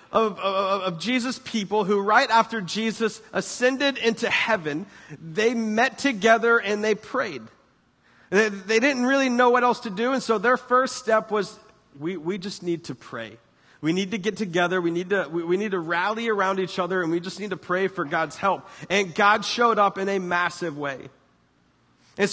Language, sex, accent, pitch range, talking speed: English, male, American, 200-250 Hz, 195 wpm